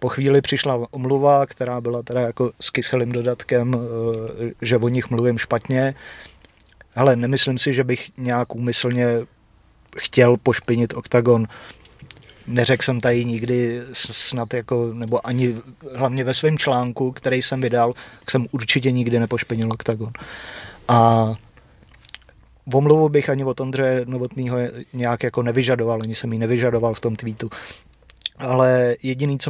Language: Czech